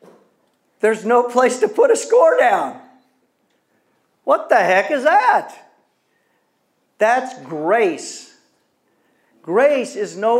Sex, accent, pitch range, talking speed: male, American, 160-240 Hz, 105 wpm